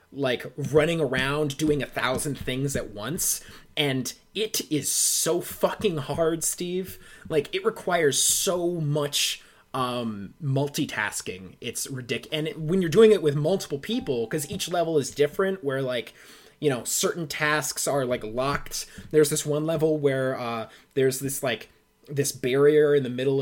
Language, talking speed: English, 155 wpm